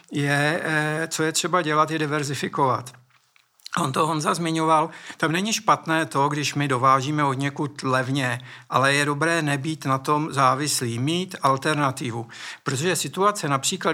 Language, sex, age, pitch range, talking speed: Czech, male, 60-79, 140-160 Hz, 140 wpm